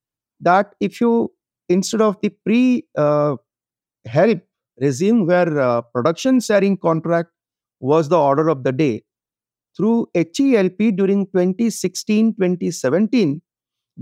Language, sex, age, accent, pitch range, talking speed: English, male, 50-69, Indian, 150-215 Hz, 105 wpm